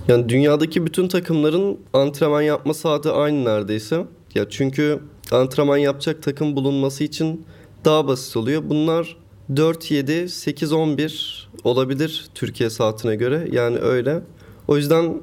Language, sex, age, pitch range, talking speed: Turkish, male, 30-49, 120-155 Hz, 125 wpm